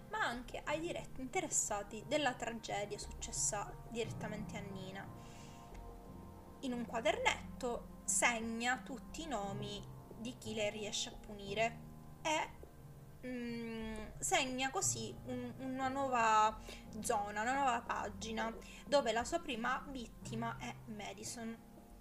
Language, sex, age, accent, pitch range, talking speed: Italian, female, 20-39, native, 205-250 Hz, 115 wpm